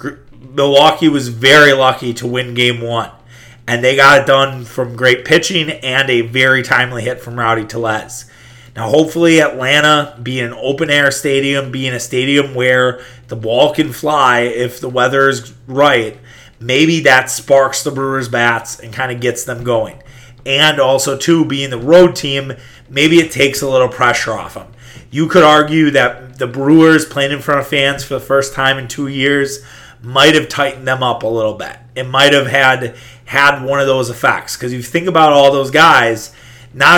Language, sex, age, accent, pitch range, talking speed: English, male, 30-49, American, 125-145 Hz, 185 wpm